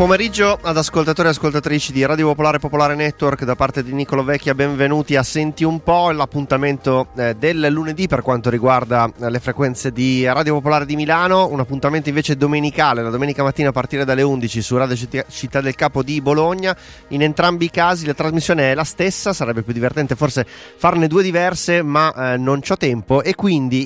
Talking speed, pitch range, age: 190 wpm, 125-150 Hz, 30-49